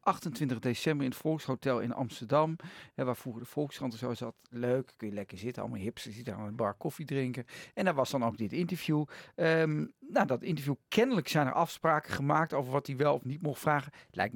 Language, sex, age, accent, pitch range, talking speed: Dutch, male, 50-69, Dutch, 125-165 Hz, 220 wpm